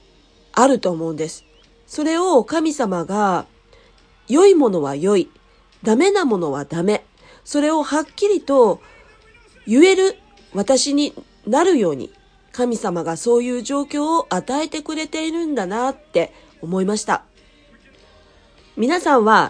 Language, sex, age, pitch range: Japanese, female, 40-59, 200-310 Hz